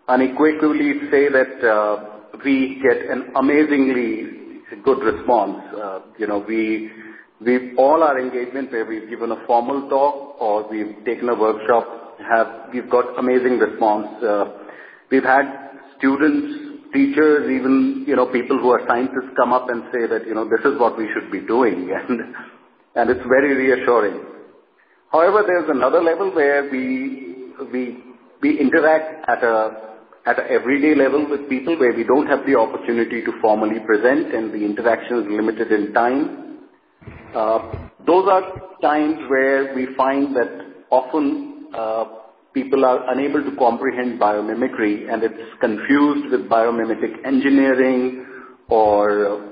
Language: Turkish